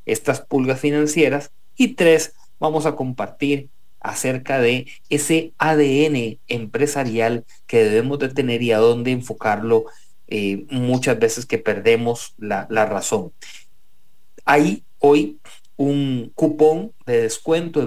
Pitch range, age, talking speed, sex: 115-150 Hz, 40-59, 120 wpm, male